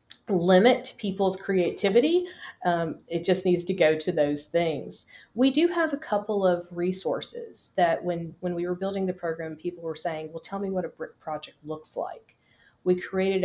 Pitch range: 165-205 Hz